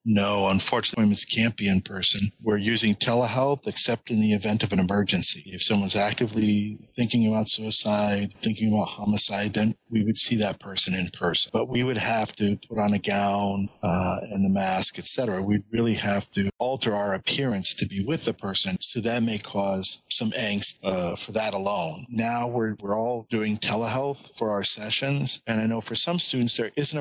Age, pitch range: 50-69, 105-120 Hz